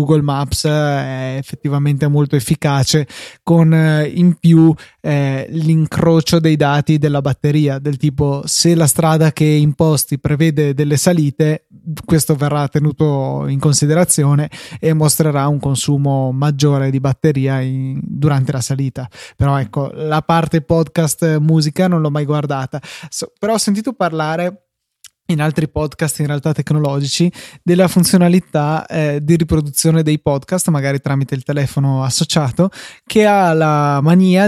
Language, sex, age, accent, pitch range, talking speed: Italian, male, 20-39, native, 145-160 Hz, 130 wpm